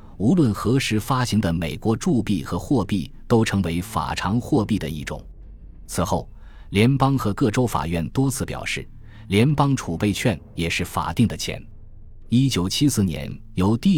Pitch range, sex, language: 85-115 Hz, male, Chinese